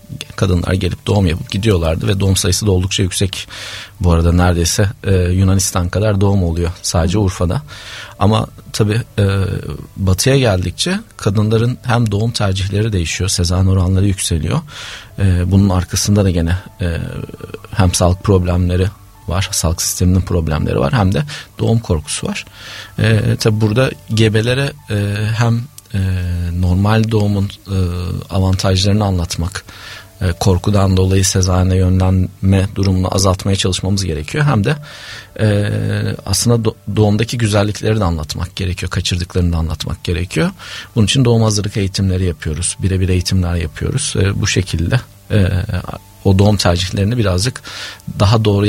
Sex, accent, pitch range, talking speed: male, native, 90-110 Hz, 115 wpm